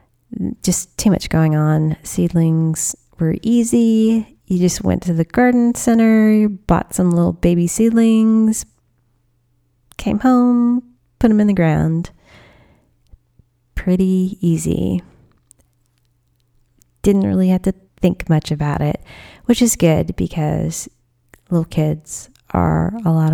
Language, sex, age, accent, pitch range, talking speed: English, female, 30-49, American, 155-215 Hz, 120 wpm